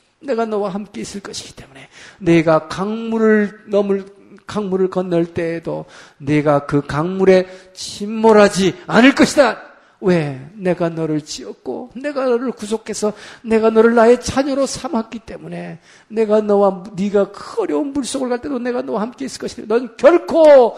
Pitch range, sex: 170-230 Hz, male